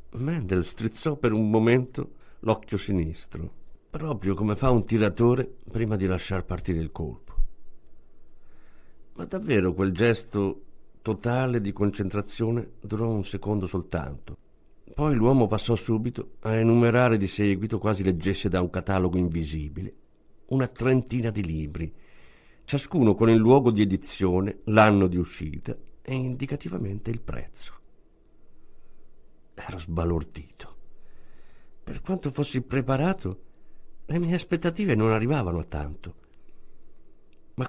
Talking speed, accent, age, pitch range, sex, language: 120 wpm, native, 50-69, 95-140 Hz, male, Italian